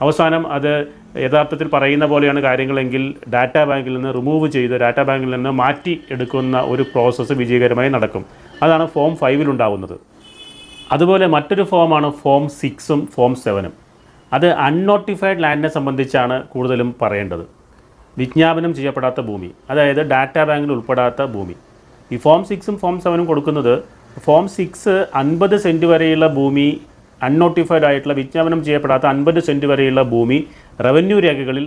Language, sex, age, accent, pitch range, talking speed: Malayalam, male, 30-49, native, 130-155 Hz, 125 wpm